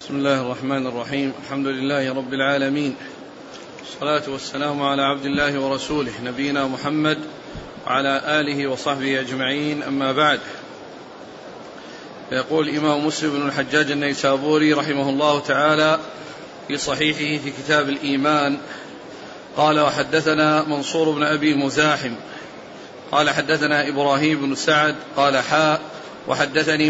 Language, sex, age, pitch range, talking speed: Arabic, male, 40-59, 140-155 Hz, 110 wpm